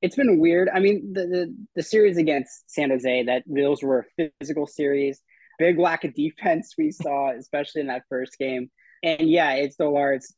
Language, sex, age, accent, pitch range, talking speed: English, male, 20-39, American, 125-155 Hz, 190 wpm